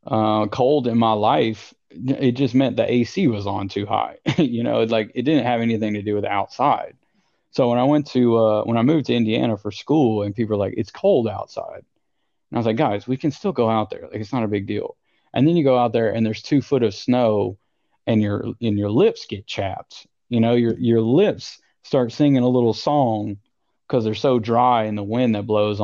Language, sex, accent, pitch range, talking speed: English, male, American, 105-125 Hz, 230 wpm